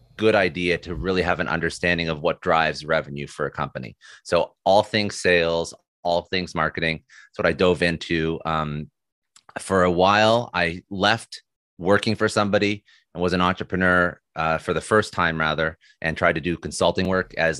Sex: male